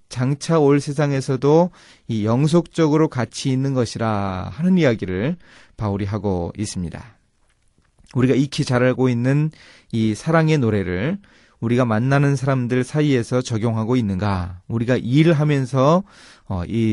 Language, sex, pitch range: Korean, male, 100-145 Hz